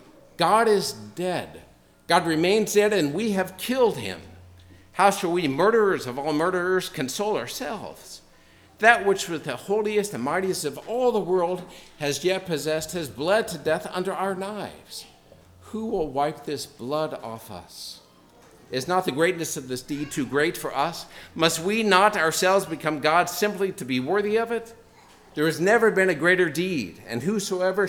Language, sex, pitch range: English, male, 125-185 Hz